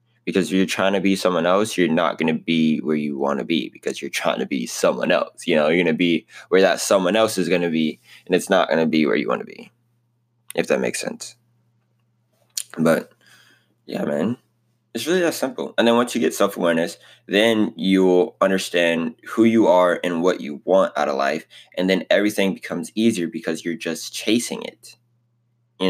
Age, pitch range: 20-39, 85-115 Hz